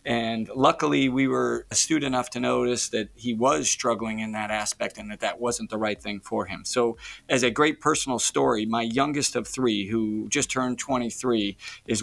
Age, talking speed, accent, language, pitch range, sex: 40-59, 195 wpm, American, English, 115-135 Hz, male